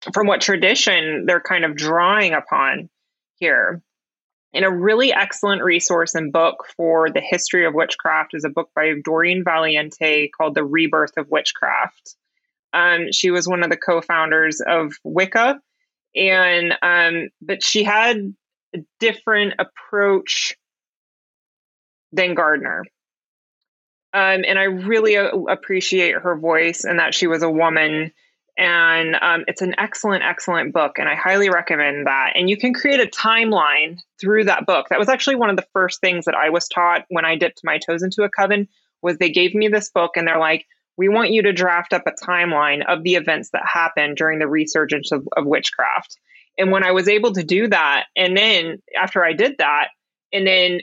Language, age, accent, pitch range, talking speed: English, 20-39, American, 165-200 Hz, 175 wpm